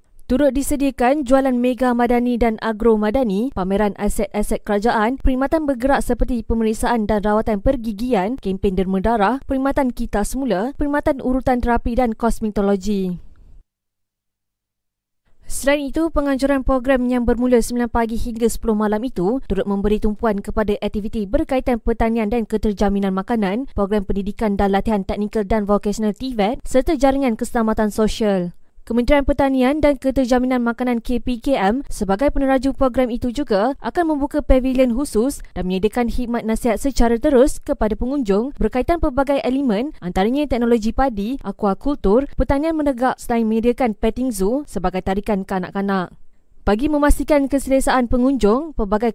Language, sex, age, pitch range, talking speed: Malay, female, 20-39, 210-265 Hz, 130 wpm